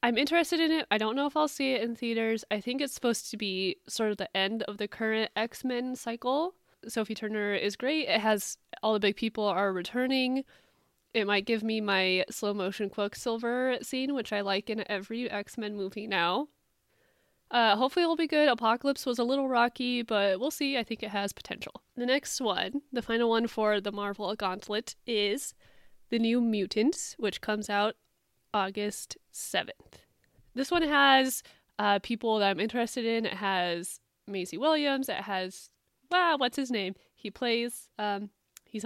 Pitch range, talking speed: 205-255 Hz, 180 wpm